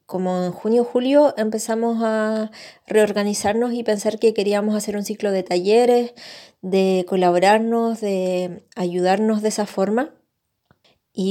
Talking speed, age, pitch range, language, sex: 125 wpm, 20-39, 190-220 Hz, Spanish, female